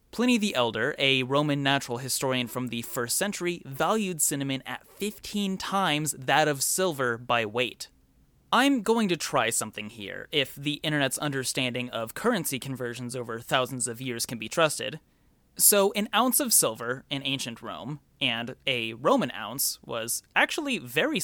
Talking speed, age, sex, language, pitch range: 160 wpm, 30-49, male, English, 125-190 Hz